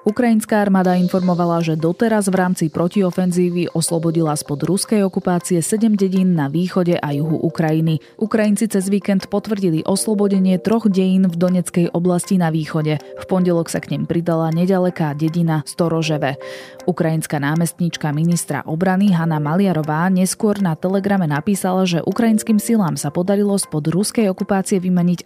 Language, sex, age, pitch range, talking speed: Slovak, female, 20-39, 155-195 Hz, 140 wpm